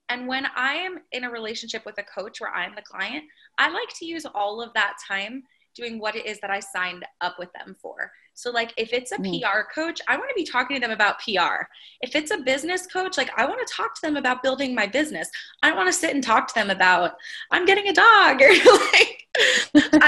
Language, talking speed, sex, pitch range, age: English, 240 wpm, female, 200-305 Hz, 20-39